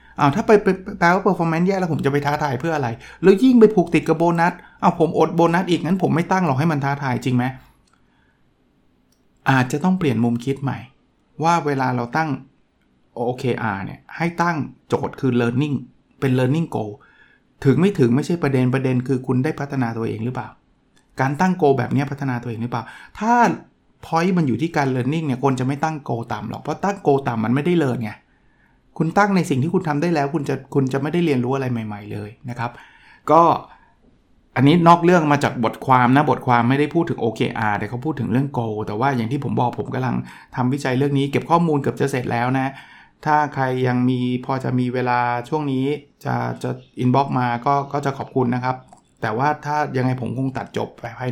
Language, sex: Thai, male